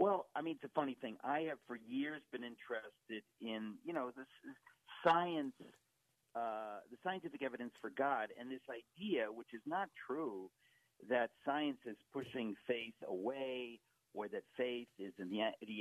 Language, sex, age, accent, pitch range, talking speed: English, male, 50-69, American, 120-155 Hz, 165 wpm